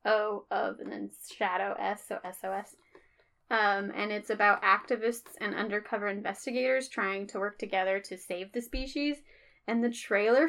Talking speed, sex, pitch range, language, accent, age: 150 wpm, female, 210-285 Hz, English, American, 10-29